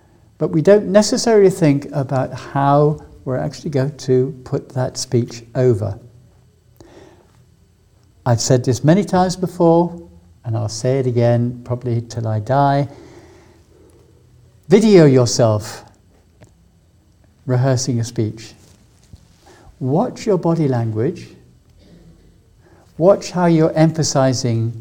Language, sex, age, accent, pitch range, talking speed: English, male, 60-79, British, 90-140 Hz, 105 wpm